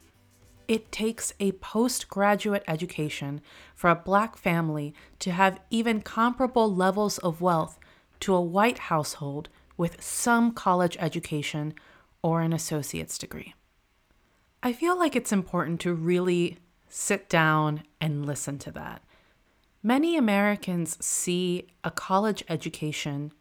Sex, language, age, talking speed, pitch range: female, English, 30-49, 120 wpm, 155-205 Hz